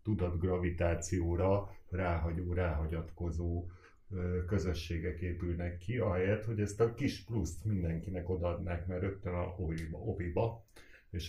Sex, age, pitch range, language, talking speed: male, 60-79, 90-105 Hz, Hungarian, 100 wpm